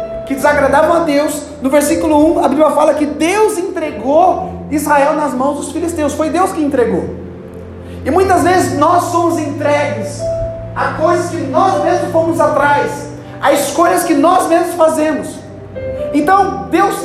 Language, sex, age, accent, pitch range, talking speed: Portuguese, male, 30-49, Brazilian, 265-350 Hz, 150 wpm